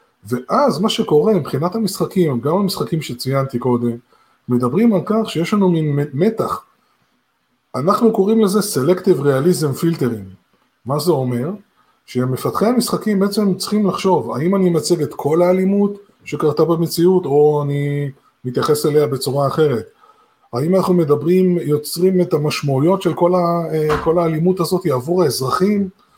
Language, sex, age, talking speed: Hebrew, male, 20-39, 135 wpm